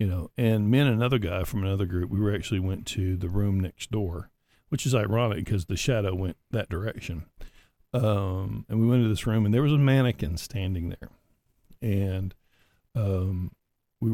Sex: male